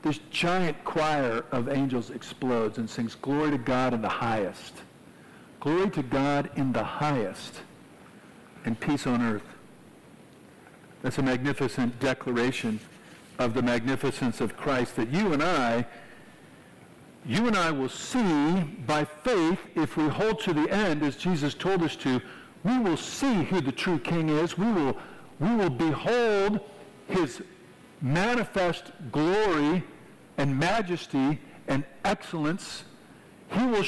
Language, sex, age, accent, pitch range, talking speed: English, male, 50-69, American, 140-205 Hz, 135 wpm